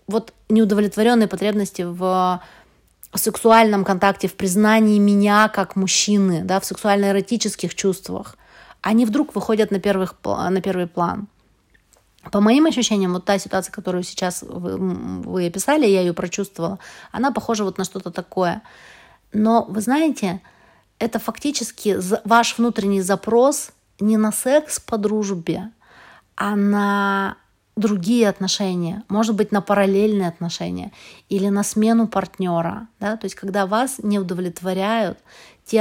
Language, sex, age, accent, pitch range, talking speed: Russian, female, 30-49, native, 185-220 Hz, 130 wpm